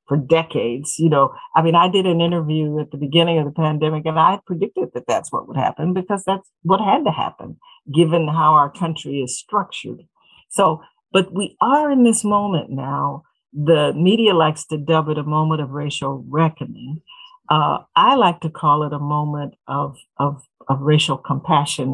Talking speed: 190 wpm